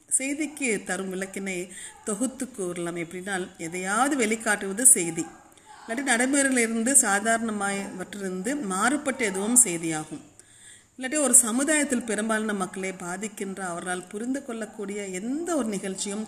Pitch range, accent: 180-235 Hz, native